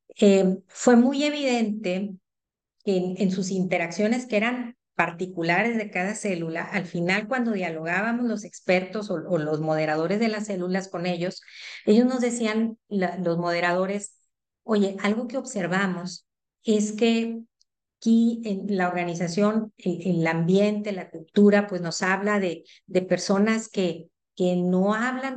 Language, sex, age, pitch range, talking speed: Spanish, female, 50-69, 175-215 Hz, 150 wpm